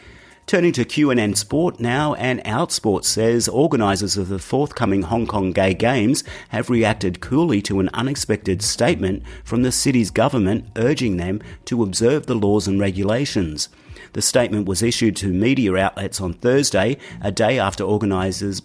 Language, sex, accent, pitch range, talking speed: English, male, Australian, 95-120 Hz, 155 wpm